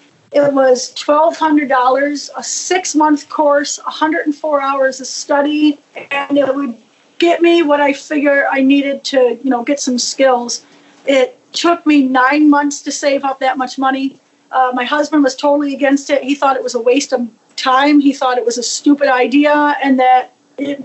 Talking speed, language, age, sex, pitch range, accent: 180 wpm, English, 40-59, female, 255-290 Hz, American